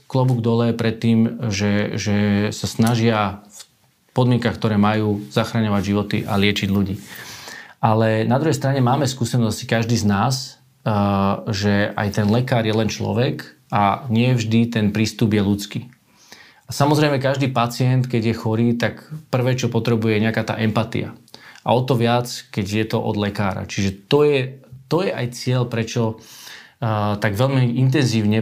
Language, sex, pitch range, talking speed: Slovak, male, 105-125 Hz, 155 wpm